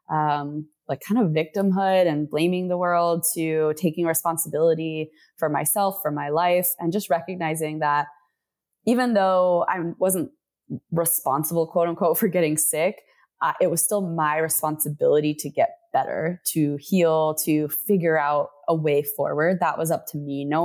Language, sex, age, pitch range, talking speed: English, female, 20-39, 155-185 Hz, 155 wpm